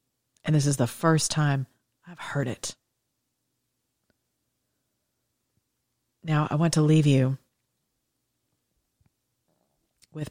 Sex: female